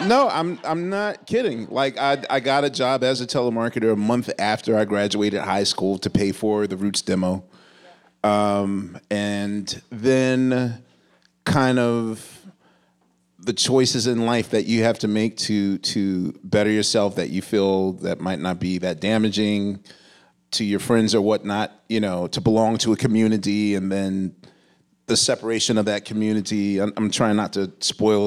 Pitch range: 95-115 Hz